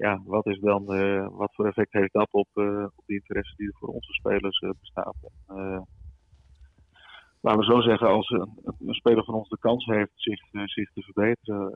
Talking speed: 210 wpm